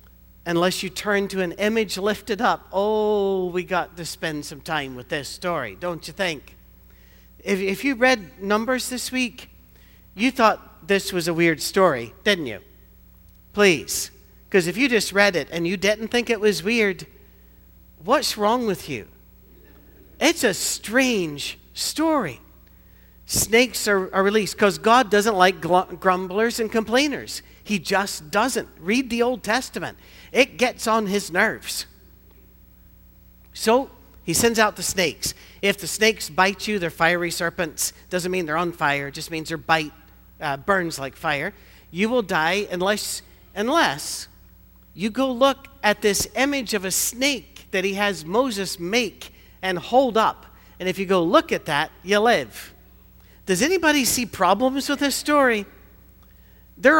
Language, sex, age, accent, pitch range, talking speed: English, male, 50-69, American, 165-225 Hz, 160 wpm